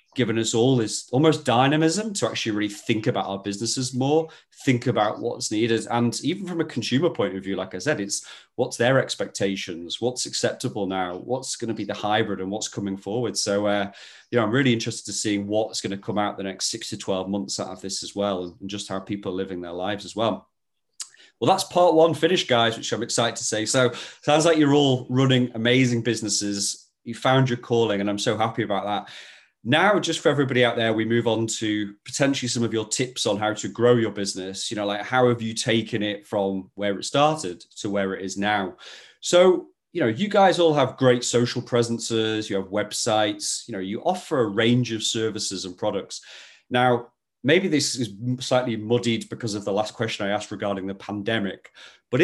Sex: male